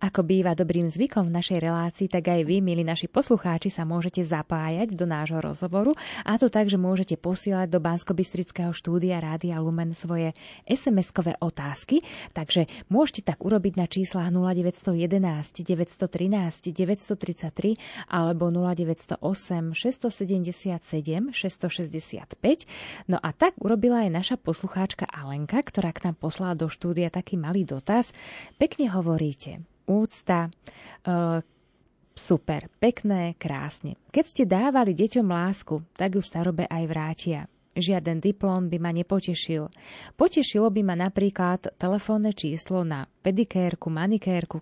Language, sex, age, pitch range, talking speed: Slovak, female, 20-39, 165-195 Hz, 125 wpm